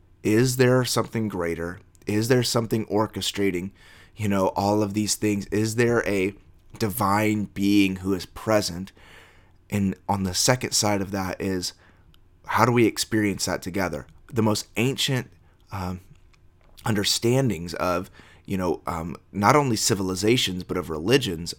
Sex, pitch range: male, 90-105 Hz